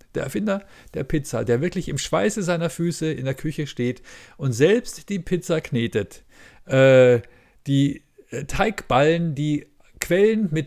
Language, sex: German, male